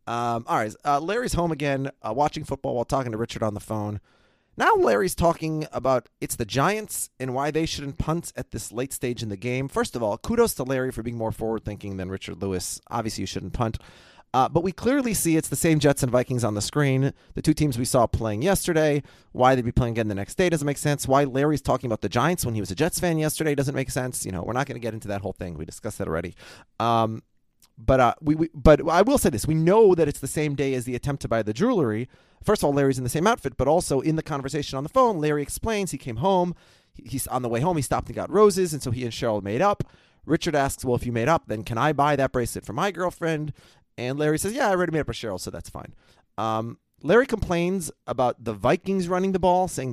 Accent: American